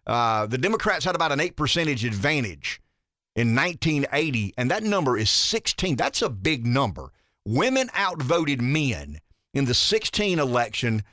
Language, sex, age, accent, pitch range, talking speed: English, male, 50-69, American, 120-170 Hz, 145 wpm